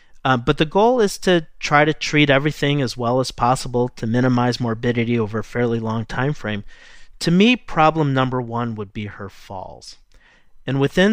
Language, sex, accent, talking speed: English, male, American, 185 wpm